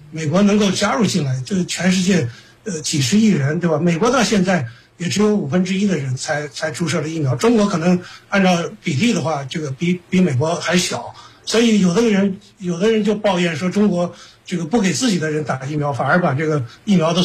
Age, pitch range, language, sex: 50-69, 150-200 Hz, Chinese, male